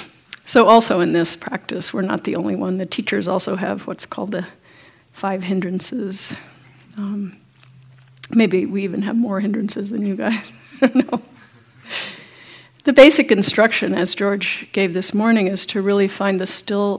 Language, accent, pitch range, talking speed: English, American, 185-215 Hz, 165 wpm